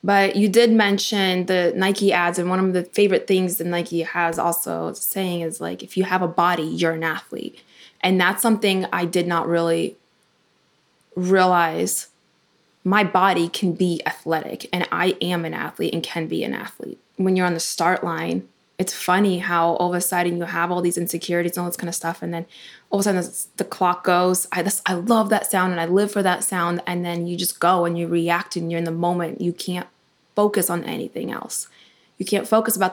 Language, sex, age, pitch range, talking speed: English, female, 20-39, 170-190 Hz, 220 wpm